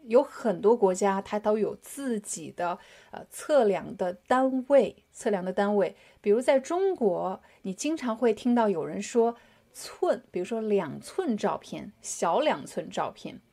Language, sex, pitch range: Chinese, female, 200-265 Hz